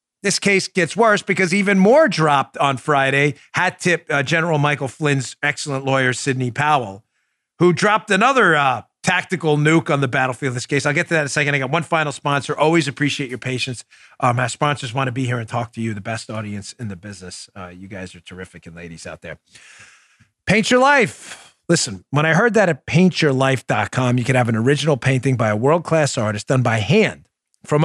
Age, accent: 40-59, American